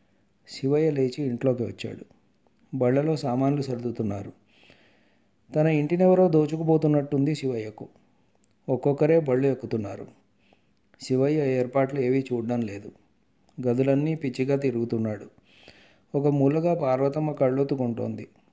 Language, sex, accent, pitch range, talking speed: Telugu, male, native, 120-140 Hz, 85 wpm